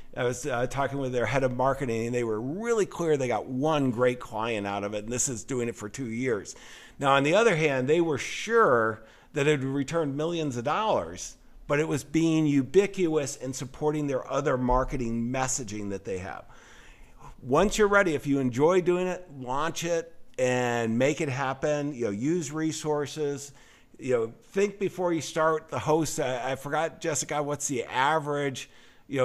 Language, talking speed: English, 190 wpm